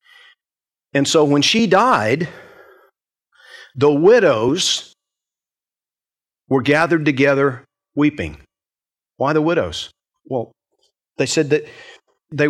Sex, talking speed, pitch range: male, 90 wpm, 140-190 Hz